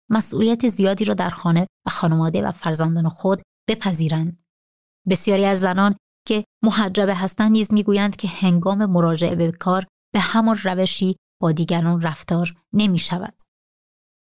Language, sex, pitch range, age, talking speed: Persian, female, 175-205 Hz, 30-49, 135 wpm